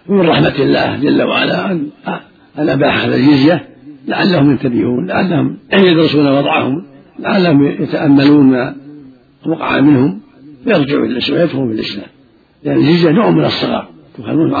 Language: Arabic